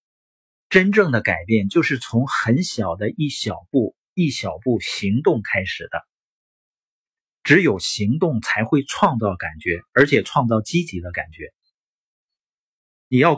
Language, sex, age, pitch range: Chinese, male, 50-69, 110-165 Hz